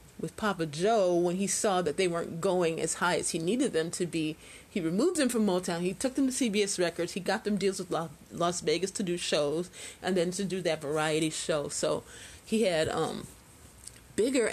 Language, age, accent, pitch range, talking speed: English, 30-49, American, 160-195 Hz, 215 wpm